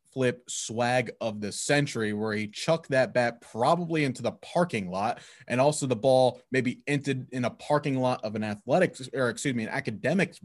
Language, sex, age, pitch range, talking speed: English, male, 20-39, 110-140 Hz, 190 wpm